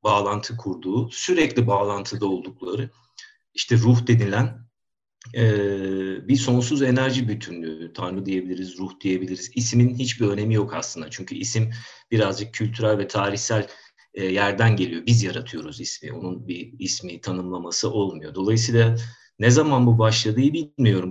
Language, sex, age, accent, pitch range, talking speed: Turkish, male, 50-69, native, 95-120 Hz, 130 wpm